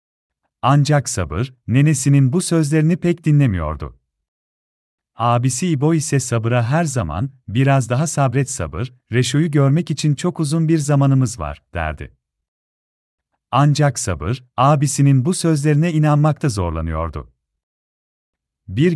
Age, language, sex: 40-59, Turkish, male